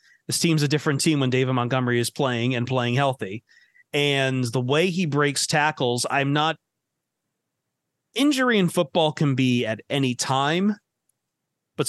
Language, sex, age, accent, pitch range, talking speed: English, male, 30-49, American, 125-160 Hz, 150 wpm